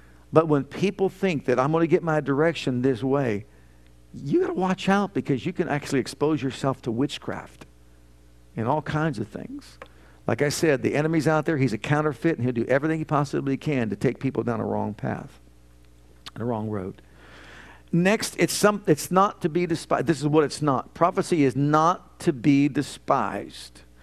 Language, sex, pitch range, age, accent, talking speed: English, male, 100-155 Hz, 50-69, American, 195 wpm